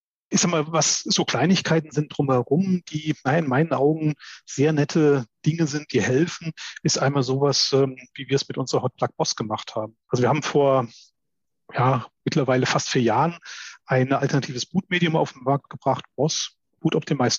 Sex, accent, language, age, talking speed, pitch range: male, German, German, 30-49, 160 wpm, 130-155 Hz